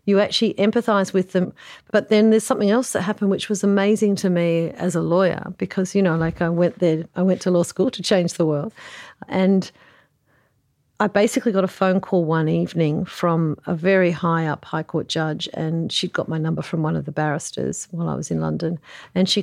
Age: 50-69